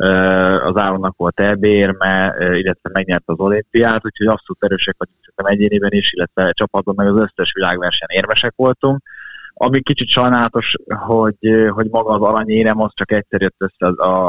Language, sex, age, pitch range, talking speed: Hungarian, male, 20-39, 90-110 Hz, 170 wpm